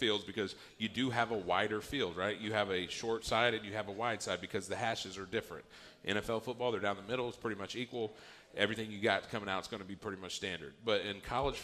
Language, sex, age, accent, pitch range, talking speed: English, male, 40-59, American, 95-115 Hz, 260 wpm